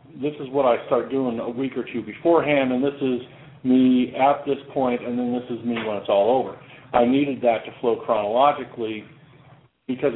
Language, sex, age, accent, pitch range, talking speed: English, male, 50-69, American, 115-140 Hz, 200 wpm